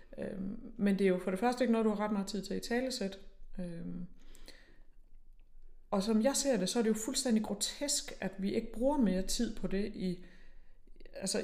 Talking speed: 200 wpm